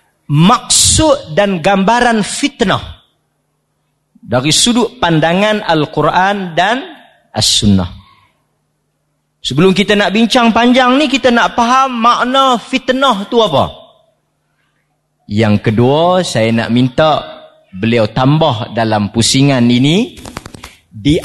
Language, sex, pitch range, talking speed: Malay, male, 160-255 Hz, 95 wpm